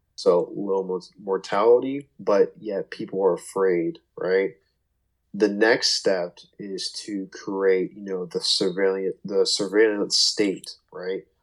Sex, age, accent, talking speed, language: male, 20-39, American, 120 wpm, English